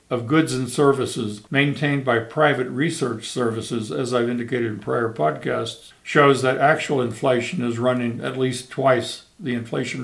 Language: English